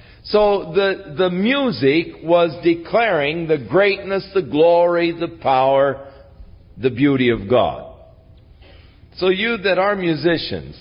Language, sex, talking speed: English, male, 115 wpm